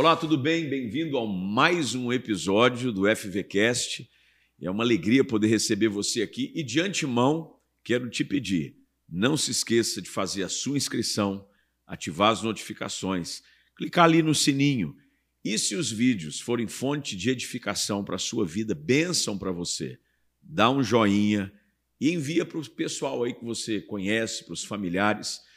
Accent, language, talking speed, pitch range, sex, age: Brazilian, Portuguese, 160 wpm, 105-140 Hz, male, 50-69